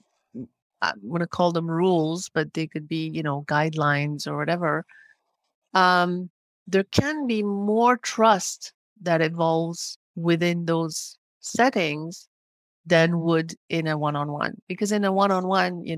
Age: 40-59